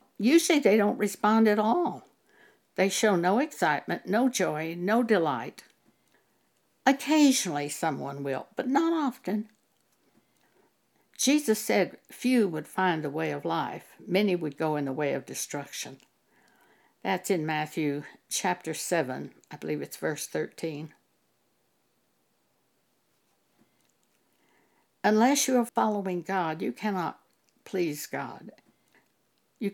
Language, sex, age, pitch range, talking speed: English, female, 60-79, 155-220 Hz, 115 wpm